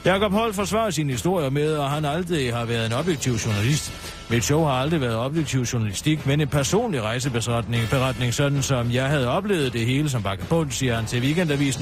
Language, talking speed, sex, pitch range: Danish, 200 wpm, male, 125-175 Hz